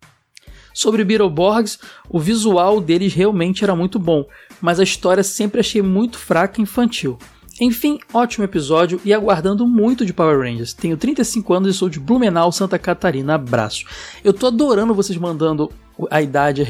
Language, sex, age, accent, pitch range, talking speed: Portuguese, male, 20-39, Brazilian, 150-210 Hz, 170 wpm